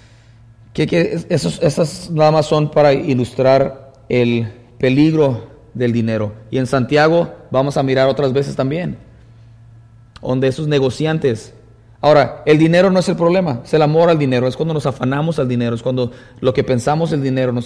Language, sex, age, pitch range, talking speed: English, male, 30-49, 115-150 Hz, 175 wpm